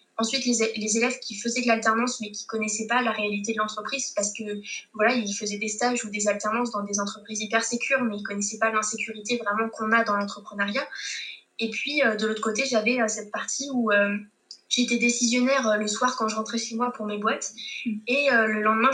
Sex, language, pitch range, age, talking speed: female, French, 215-245 Hz, 20-39, 210 wpm